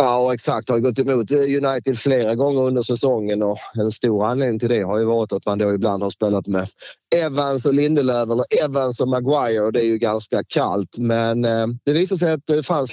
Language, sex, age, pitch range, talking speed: Swedish, male, 30-49, 110-135 Hz, 215 wpm